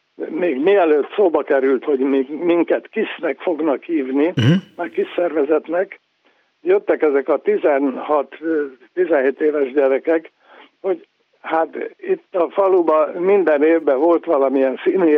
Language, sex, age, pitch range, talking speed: Hungarian, male, 60-79, 145-190 Hz, 110 wpm